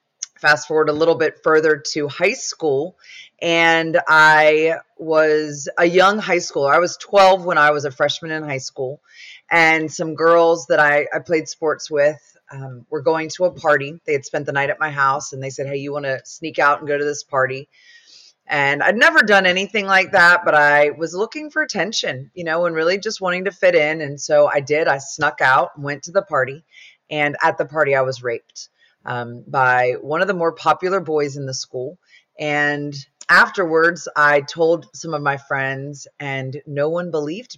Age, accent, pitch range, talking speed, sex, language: 30-49, American, 140-165 Hz, 205 wpm, female, English